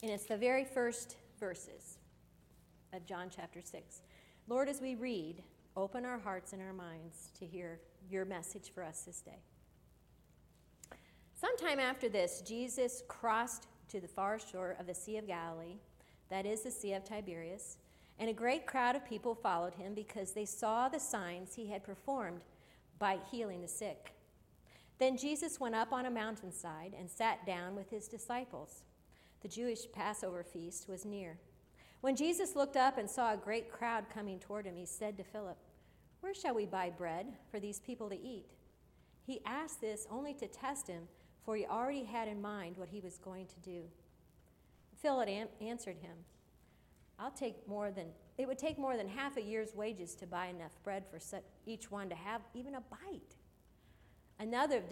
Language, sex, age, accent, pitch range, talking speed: English, female, 40-59, American, 185-245 Hz, 180 wpm